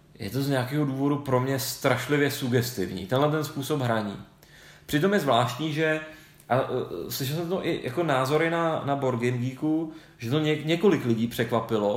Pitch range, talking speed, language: 115-150 Hz, 165 wpm, Czech